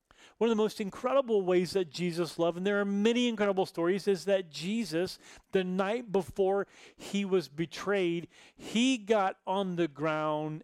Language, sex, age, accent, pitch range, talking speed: English, male, 40-59, American, 150-190 Hz, 165 wpm